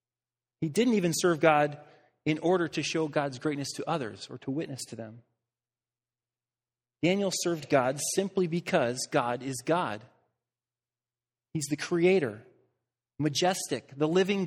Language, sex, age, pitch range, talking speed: English, male, 30-49, 125-180 Hz, 135 wpm